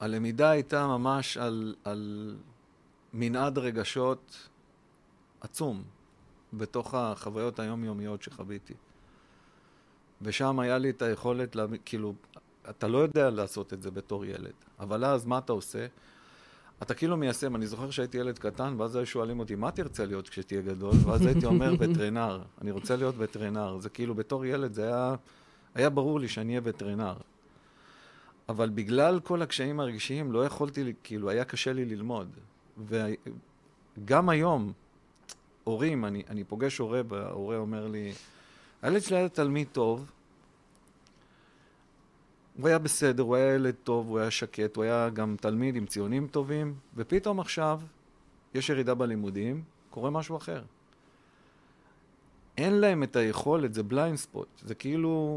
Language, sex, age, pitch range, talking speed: Hebrew, male, 50-69, 110-140 Hz, 140 wpm